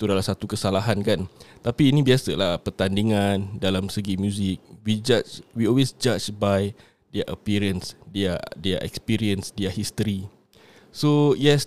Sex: male